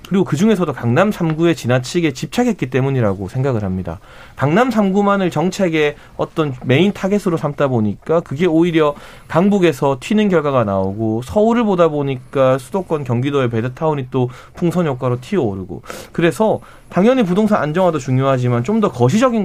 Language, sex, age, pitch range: Korean, male, 30-49, 125-180 Hz